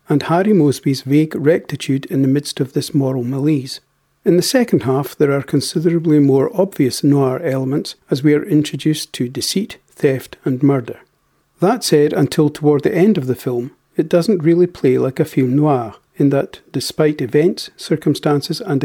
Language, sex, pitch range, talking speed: English, male, 140-170 Hz, 175 wpm